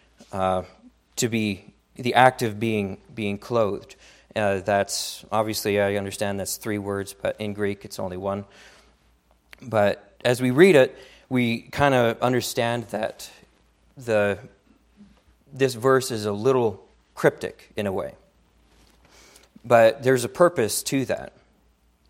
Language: English